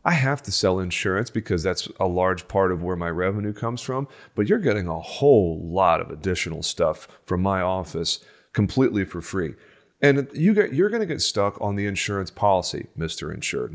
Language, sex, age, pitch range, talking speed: English, male, 30-49, 95-115 Hz, 190 wpm